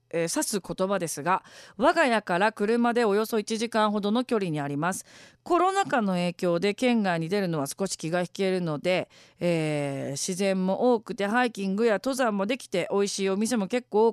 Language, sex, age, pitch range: Japanese, female, 40-59, 160-245 Hz